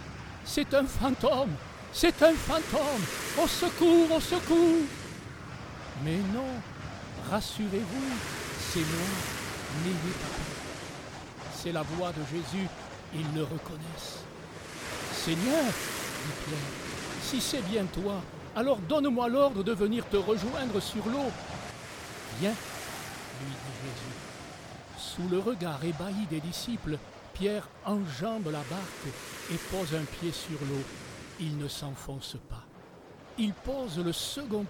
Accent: French